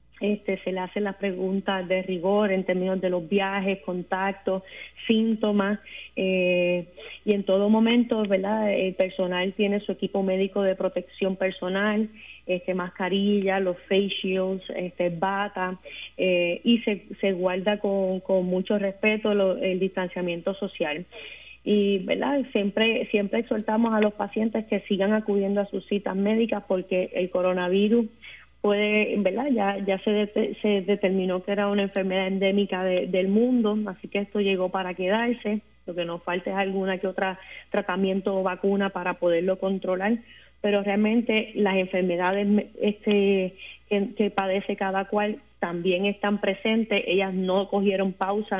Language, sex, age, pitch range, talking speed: Spanish, female, 30-49, 185-210 Hz, 150 wpm